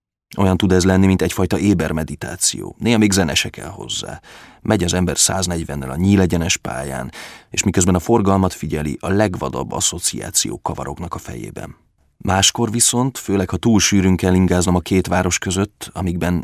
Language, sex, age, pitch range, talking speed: Hungarian, male, 30-49, 90-105 Hz, 155 wpm